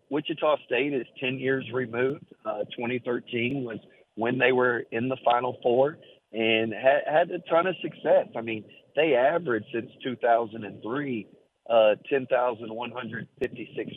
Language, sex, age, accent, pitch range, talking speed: English, male, 40-59, American, 110-130 Hz, 135 wpm